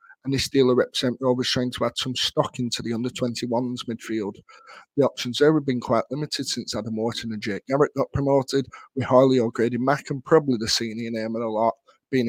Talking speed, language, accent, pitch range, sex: 205 wpm, English, British, 115-135 Hz, male